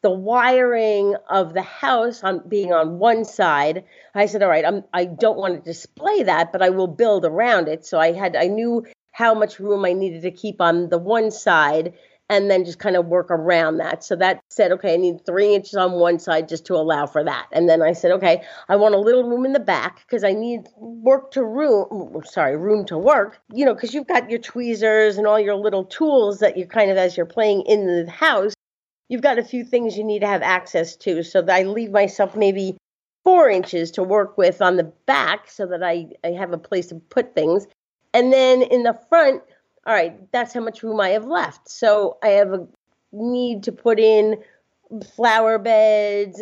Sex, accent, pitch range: female, American, 185-235 Hz